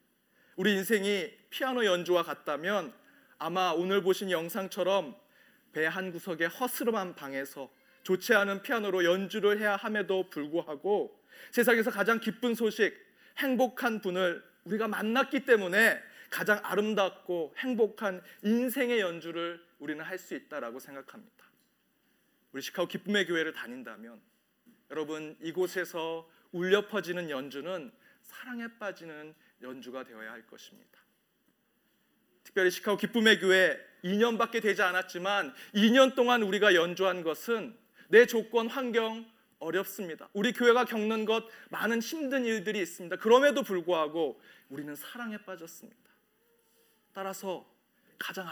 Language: Korean